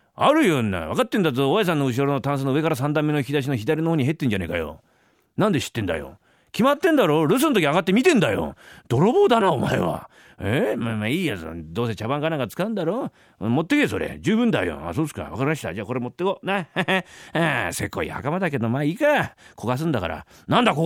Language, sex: Japanese, male